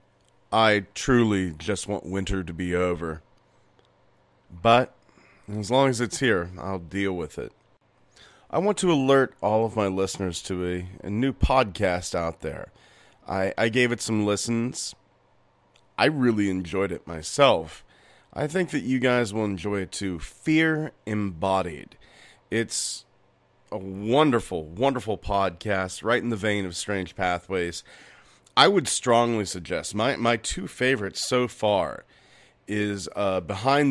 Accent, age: American, 30-49